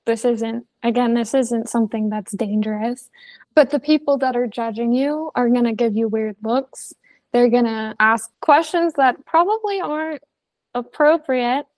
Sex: female